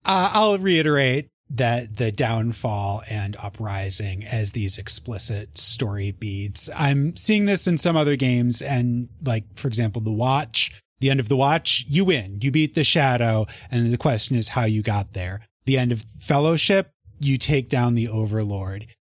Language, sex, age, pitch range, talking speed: English, male, 30-49, 110-155 Hz, 170 wpm